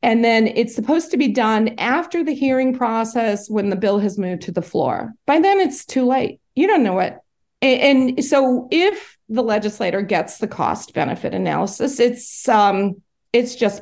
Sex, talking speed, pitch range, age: female, 180 wpm, 225-295 Hz, 40-59